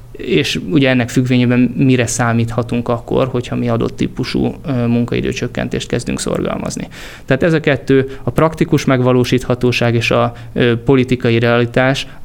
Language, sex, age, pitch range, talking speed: Hungarian, male, 20-39, 115-135 Hz, 120 wpm